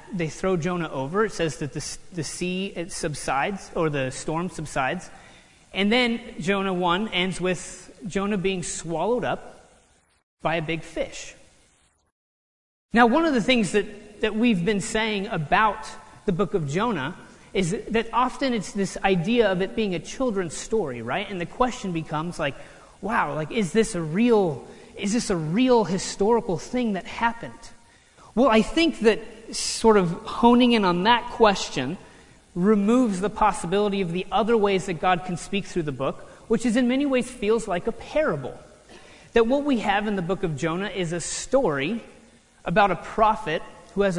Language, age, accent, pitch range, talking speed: English, 30-49, American, 175-225 Hz, 175 wpm